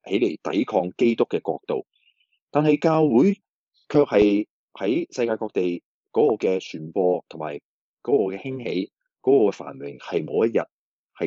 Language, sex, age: Chinese, male, 20-39